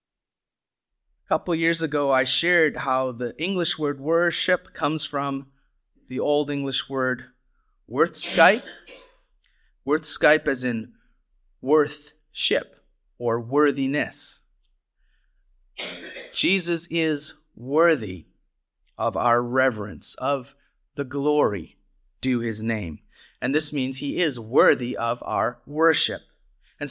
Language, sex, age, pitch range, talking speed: English, male, 30-49, 130-165 Hz, 105 wpm